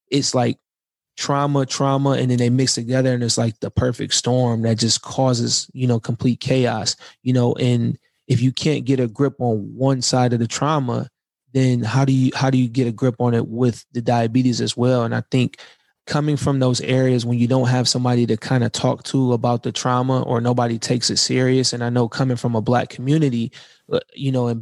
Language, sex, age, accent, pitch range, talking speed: English, male, 20-39, American, 120-130 Hz, 220 wpm